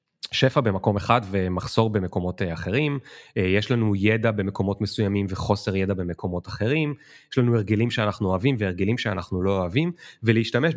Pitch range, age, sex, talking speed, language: 95-125 Hz, 30-49, male, 140 wpm, Hebrew